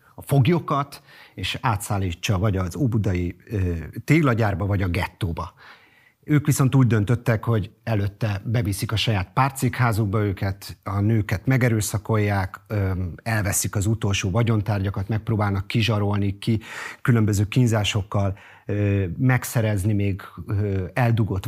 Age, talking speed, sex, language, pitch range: 40-59, 105 wpm, male, Hungarian, 100-115 Hz